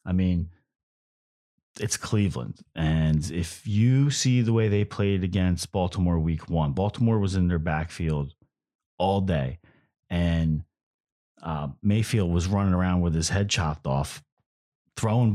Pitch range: 85-110 Hz